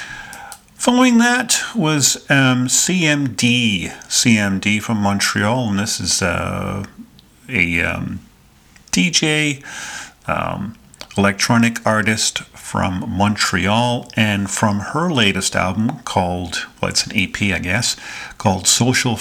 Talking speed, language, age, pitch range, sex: 105 wpm, English, 50-69, 95-115 Hz, male